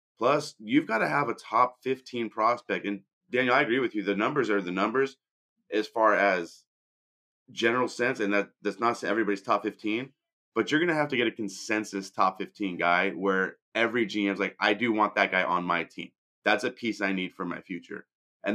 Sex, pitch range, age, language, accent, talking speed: male, 100-130 Hz, 30-49, English, American, 210 wpm